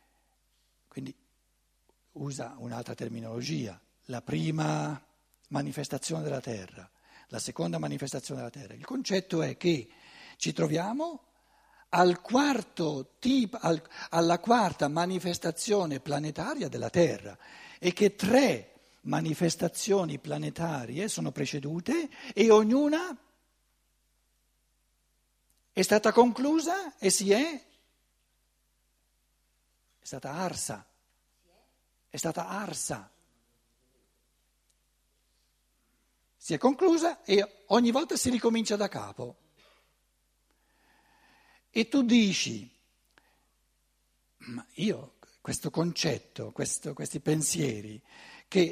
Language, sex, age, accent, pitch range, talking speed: Italian, male, 60-79, native, 145-220 Hz, 85 wpm